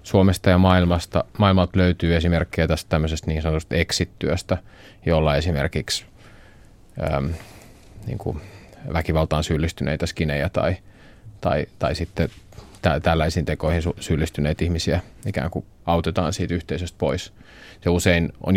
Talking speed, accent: 120 wpm, native